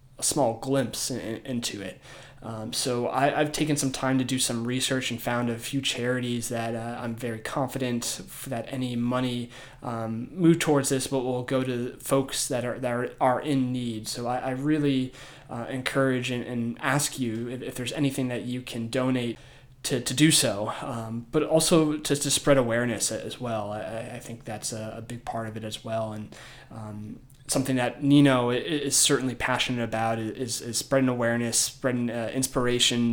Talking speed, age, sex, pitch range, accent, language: 185 wpm, 20-39, male, 115-135 Hz, American, English